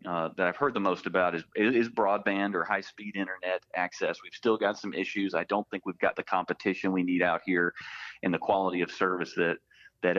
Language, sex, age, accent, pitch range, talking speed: English, male, 30-49, American, 85-95 Hz, 225 wpm